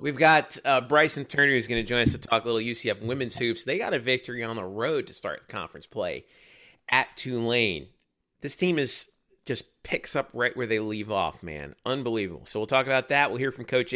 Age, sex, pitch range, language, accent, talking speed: 40-59, male, 115-150 Hz, English, American, 225 wpm